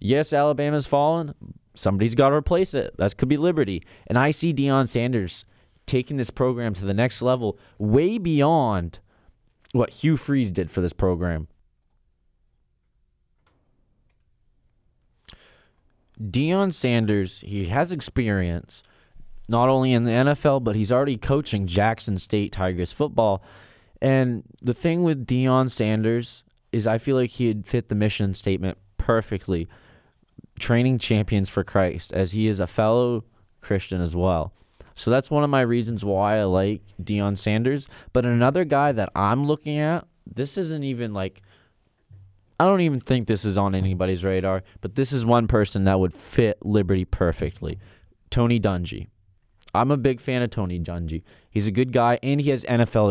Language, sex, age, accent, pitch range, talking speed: English, male, 20-39, American, 95-125 Hz, 155 wpm